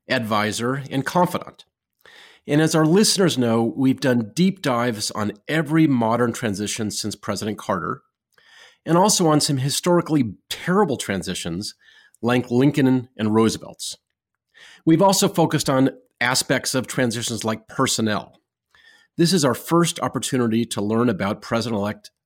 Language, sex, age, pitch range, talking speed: English, male, 40-59, 110-155 Hz, 130 wpm